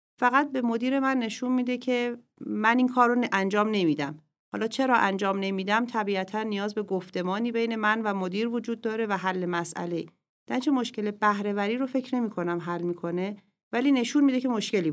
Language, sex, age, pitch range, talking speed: Persian, female, 40-59, 185-230 Hz, 185 wpm